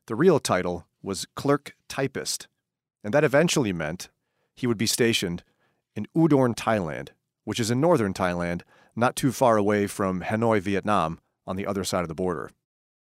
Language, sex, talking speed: English, male, 165 wpm